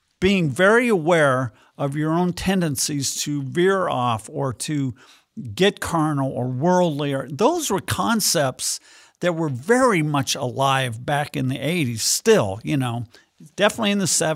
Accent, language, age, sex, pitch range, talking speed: American, English, 50-69, male, 145-190 Hz, 140 wpm